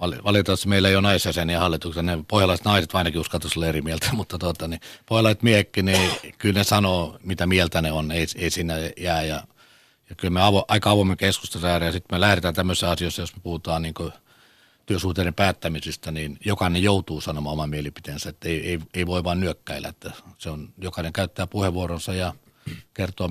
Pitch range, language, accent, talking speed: 85-105 Hz, Finnish, native, 180 wpm